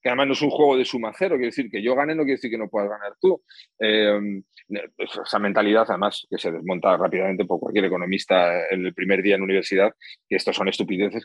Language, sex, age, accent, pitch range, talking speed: Spanish, male, 30-49, Spanish, 105-145 Hz, 230 wpm